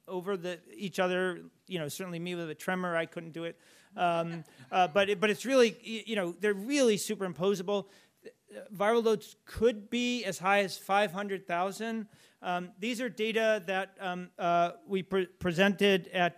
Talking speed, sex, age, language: 170 wpm, male, 40-59, English